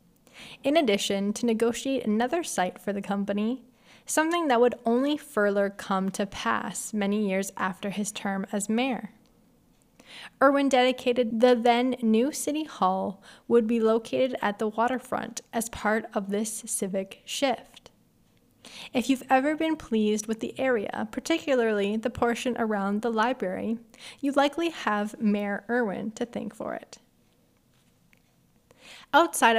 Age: 10-29